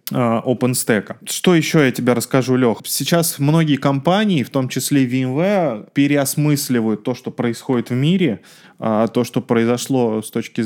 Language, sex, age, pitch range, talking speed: Russian, male, 20-39, 115-140 Hz, 140 wpm